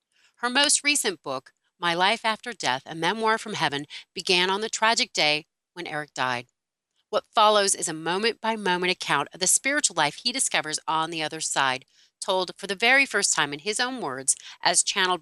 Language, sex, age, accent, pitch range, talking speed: English, female, 40-59, American, 150-215 Hz, 195 wpm